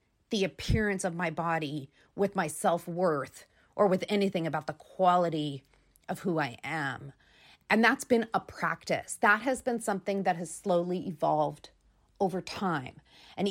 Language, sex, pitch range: English, female, 175-215 Hz